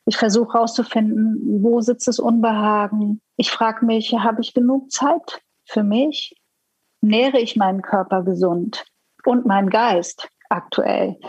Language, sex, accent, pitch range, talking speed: German, female, German, 200-235 Hz, 135 wpm